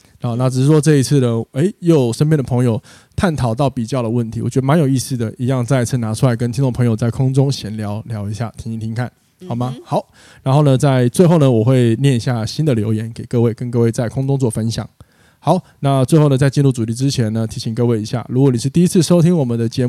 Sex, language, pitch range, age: male, Chinese, 120-145 Hz, 20-39